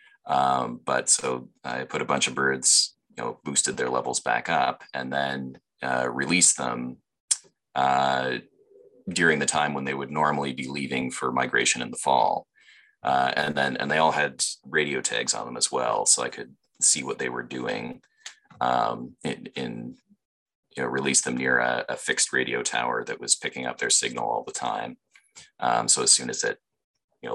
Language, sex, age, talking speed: English, male, 30-49, 185 wpm